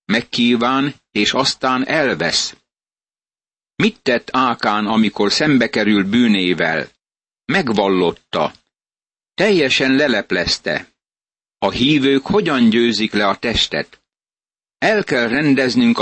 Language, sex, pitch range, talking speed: Hungarian, male, 105-130 Hz, 85 wpm